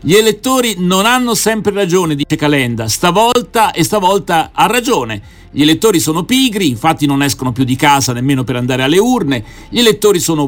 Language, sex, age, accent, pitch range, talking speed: Italian, male, 50-69, native, 145-205 Hz, 175 wpm